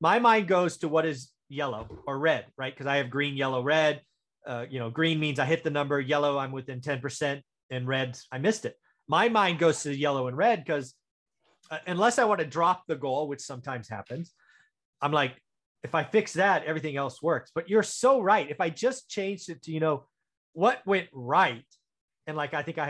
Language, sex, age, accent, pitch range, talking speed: English, male, 30-49, American, 130-185 Hz, 220 wpm